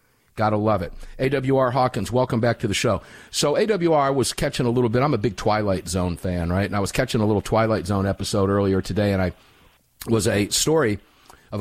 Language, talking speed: English, 210 wpm